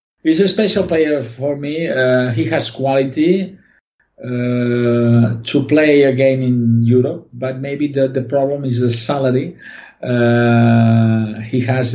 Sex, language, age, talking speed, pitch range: male, Italian, 50-69, 140 wpm, 115-135 Hz